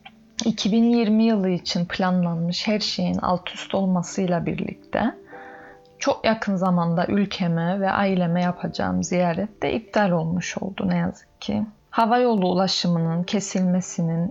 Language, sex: Turkish, female